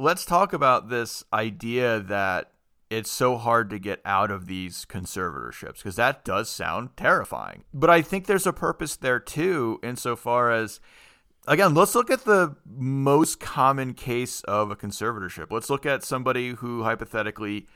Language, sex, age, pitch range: English, male, 30-49, 100-125 Hz